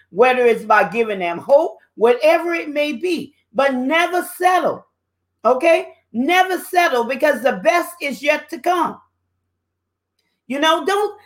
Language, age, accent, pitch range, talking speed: English, 40-59, American, 235-315 Hz, 140 wpm